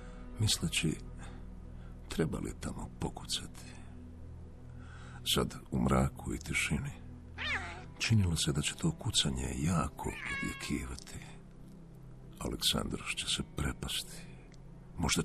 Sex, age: male, 60-79